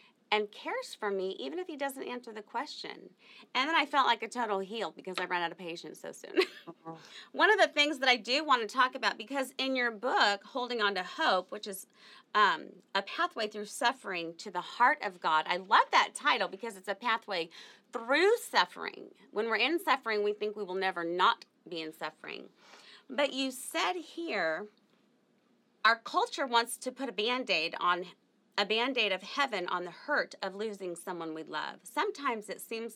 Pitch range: 190-270 Hz